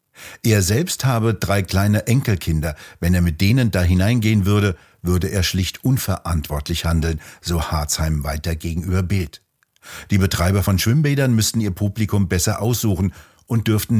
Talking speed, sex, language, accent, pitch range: 145 wpm, male, German, German, 90-110 Hz